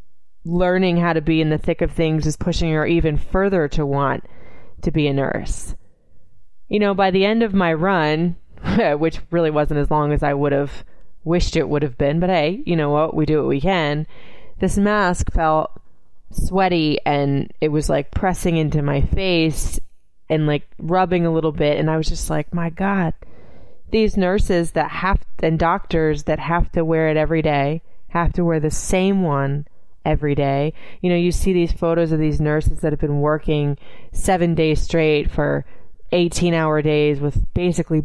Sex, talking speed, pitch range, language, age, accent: female, 190 wpm, 150-175 Hz, English, 20-39, American